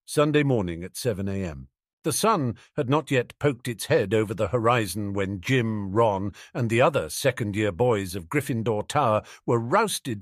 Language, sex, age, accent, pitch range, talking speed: English, male, 50-69, British, 110-150 Hz, 175 wpm